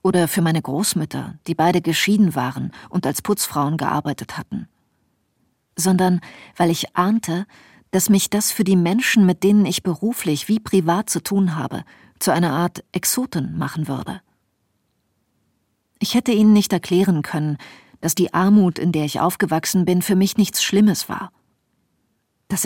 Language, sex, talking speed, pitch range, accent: German, female, 155 wpm, 160-200 Hz, German